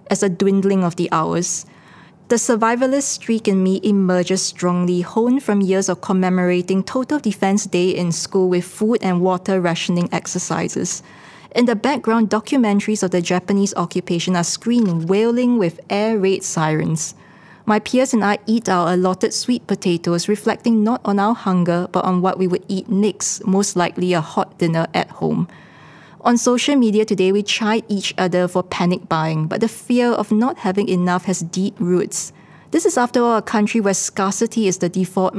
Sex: female